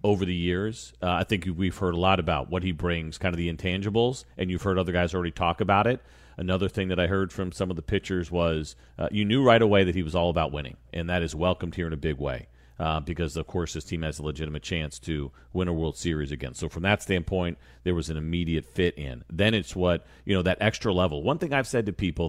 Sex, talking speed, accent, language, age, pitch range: male, 265 wpm, American, English, 40-59, 80-100 Hz